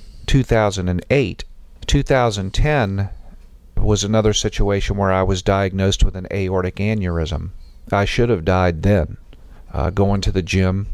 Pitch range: 90-100 Hz